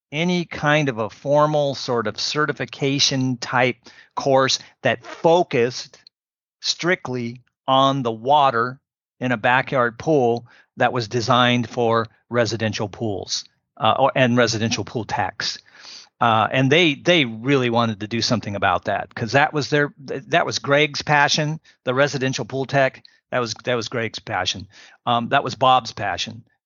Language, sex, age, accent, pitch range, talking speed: English, male, 40-59, American, 115-140 Hz, 145 wpm